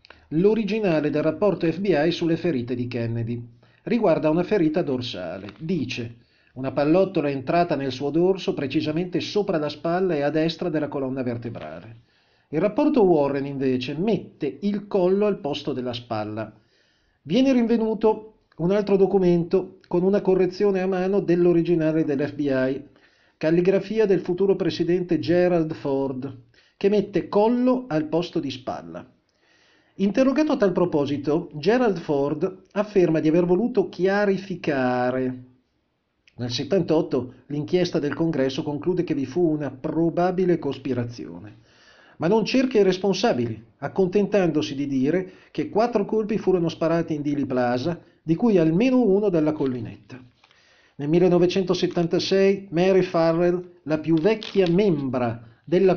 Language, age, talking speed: Italian, 40-59, 130 wpm